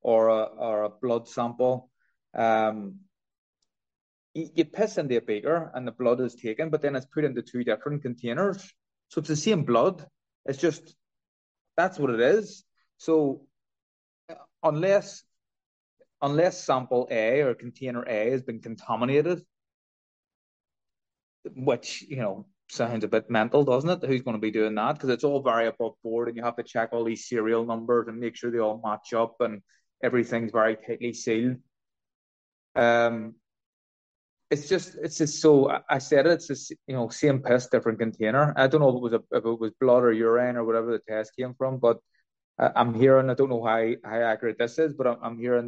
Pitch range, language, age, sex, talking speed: 115-145 Hz, English, 20-39, male, 185 wpm